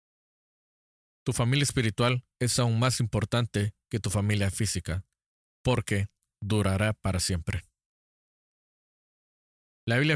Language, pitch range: Spanish, 95-115 Hz